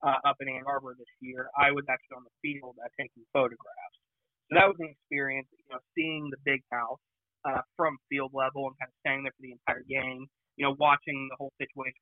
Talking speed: 230 wpm